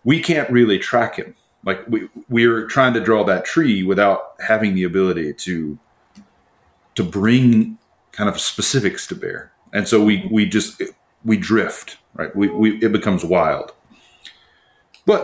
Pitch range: 90-120 Hz